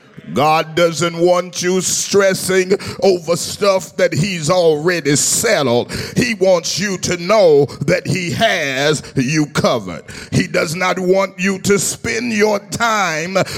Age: 40-59